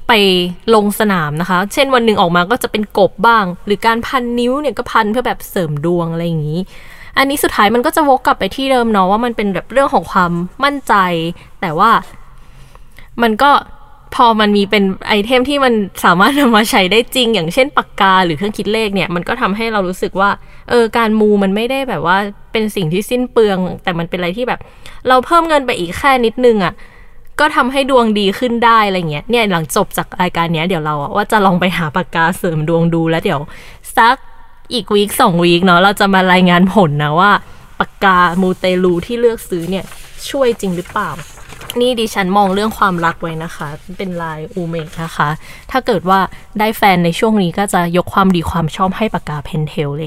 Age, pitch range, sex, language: 20-39, 175-235 Hz, female, Thai